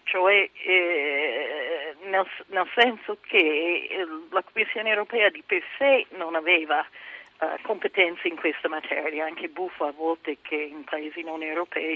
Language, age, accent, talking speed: Italian, 50-69, native, 145 wpm